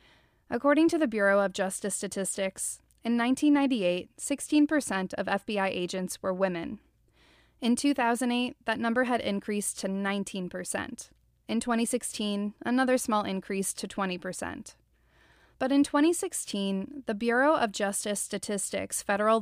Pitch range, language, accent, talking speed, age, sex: 195-240 Hz, English, American, 115 wpm, 20-39, female